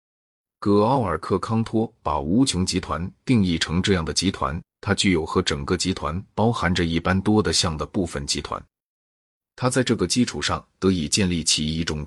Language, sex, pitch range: Chinese, male, 85-110 Hz